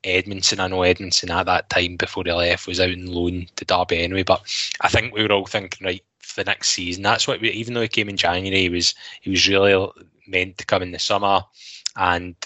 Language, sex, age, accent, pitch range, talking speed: English, male, 10-29, British, 90-100 Hz, 240 wpm